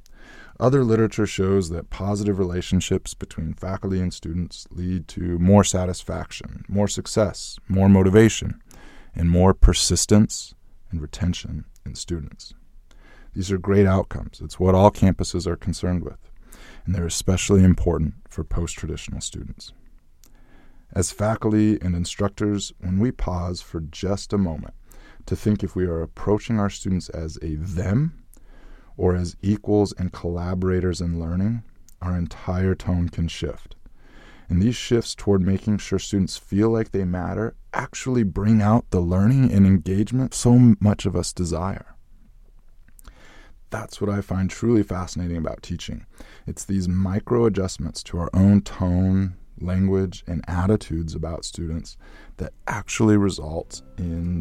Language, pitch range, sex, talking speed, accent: English, 85-100 Hz, male, 135 wpm, American